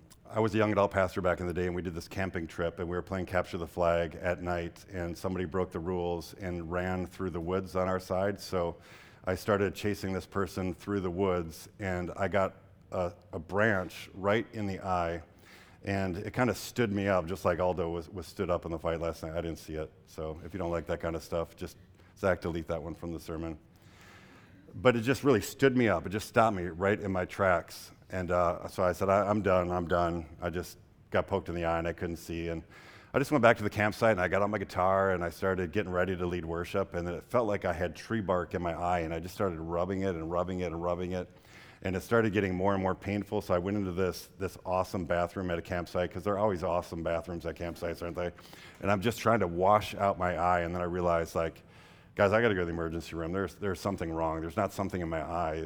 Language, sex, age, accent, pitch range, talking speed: English, male, 50-69, American, 85-100 Hz, 260 wpm